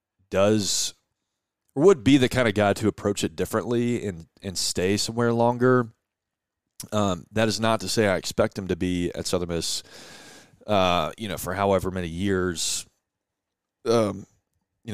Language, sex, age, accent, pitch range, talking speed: English, male, 30-49, American, 90-105 Hz, 160 wpm